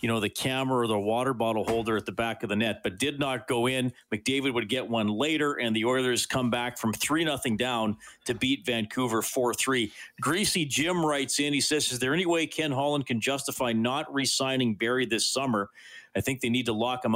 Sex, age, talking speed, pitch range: male, 40-59, 225 wpm, 105-125 Hz